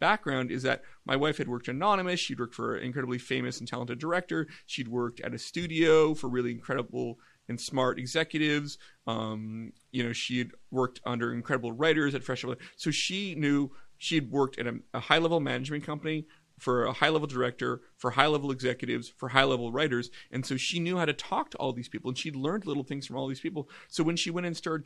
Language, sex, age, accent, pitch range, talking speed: English, male, 30-49, American, 125-155 Hz, 215 wpm